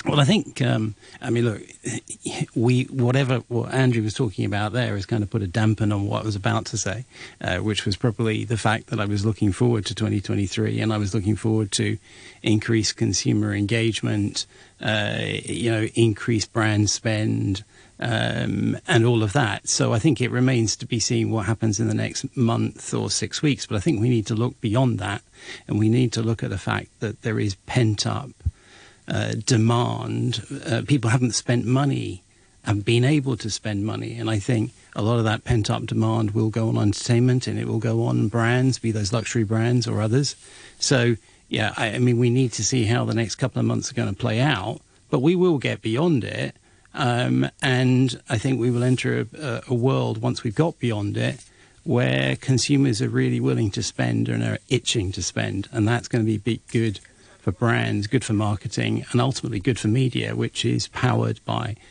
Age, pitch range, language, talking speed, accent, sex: 50-69, 110-125 Hz, English, 205 wpm, British, male